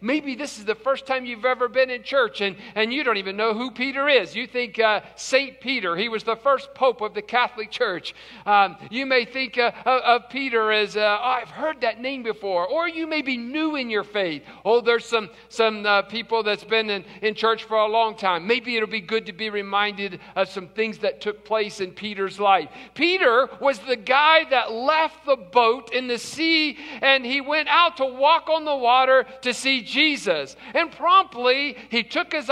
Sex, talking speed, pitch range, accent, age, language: male, 215 wpm, 215-285 Hz, American, 50-69, English